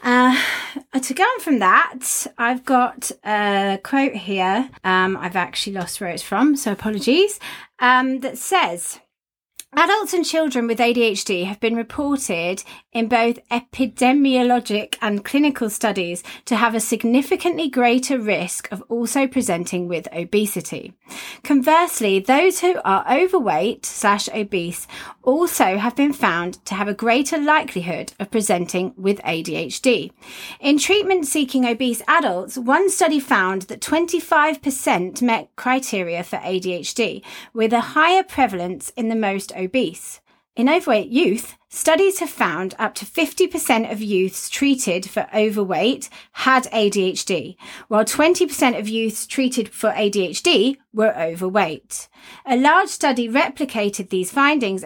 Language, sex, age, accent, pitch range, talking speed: English, female, 30-49, British, 200-280 Hz, 130 wpm